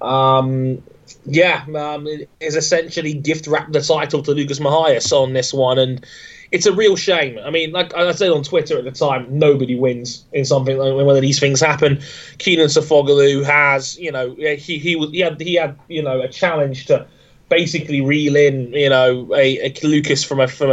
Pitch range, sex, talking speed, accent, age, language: 135-155 Hz, male, 190 wpm, British, 20-39, English